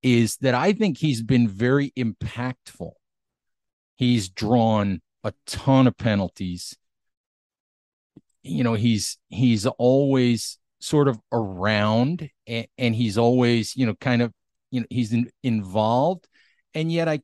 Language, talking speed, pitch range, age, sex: English, 130 wpm, 120-170 Hz, 40-59, male